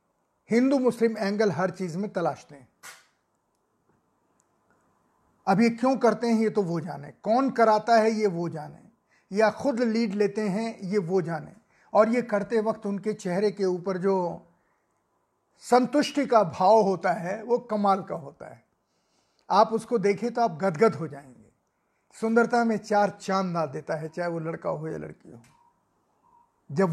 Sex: male